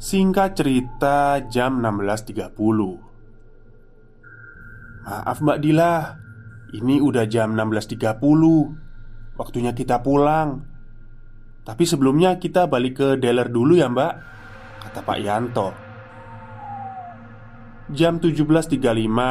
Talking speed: 85 wpm